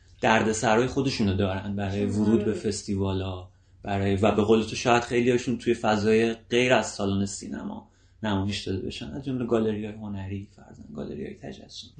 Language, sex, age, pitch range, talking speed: Persian, male, 30-49, 105-120 Hz, 155 wpm